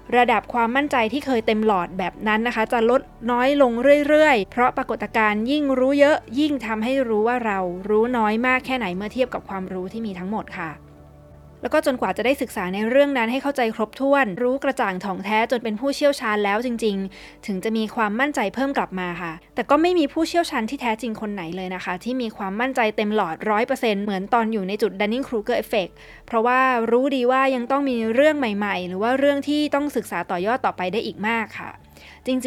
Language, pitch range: Thai, 200-255 Hz